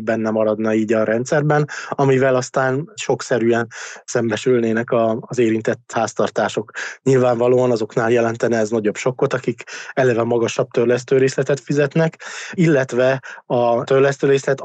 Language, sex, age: Hungarian, male, 20-39